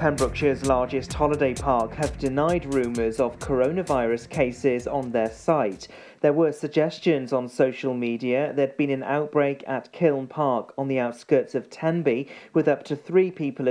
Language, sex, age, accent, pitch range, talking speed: English, male, 40-59, British, 130-155 Hz, 160 wpm